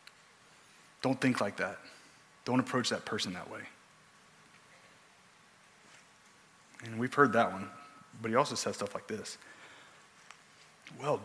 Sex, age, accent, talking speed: male, 30-49, American, 125 wpm